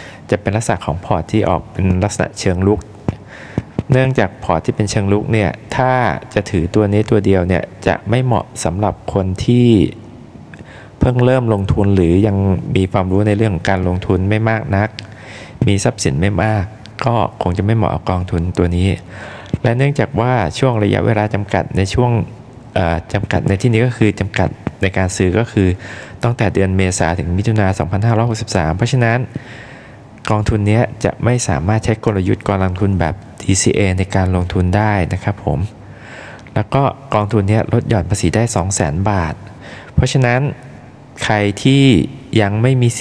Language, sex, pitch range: Thai, male, 95-115 Hz